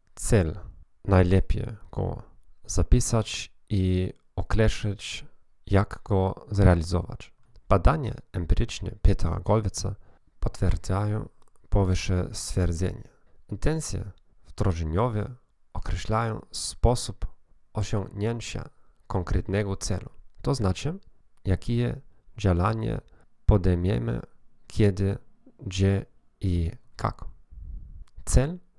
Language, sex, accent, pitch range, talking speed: Polish, male, native, 90-110 Hz, 70 wpm